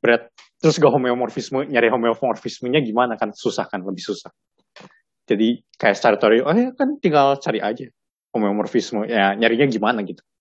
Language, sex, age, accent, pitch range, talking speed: Indonesian, male, 20-39, native, 115-140 Hz, 155 wpm